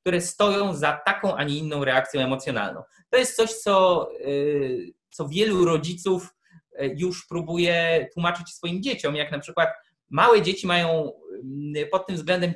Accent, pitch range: native, 150-195 Hz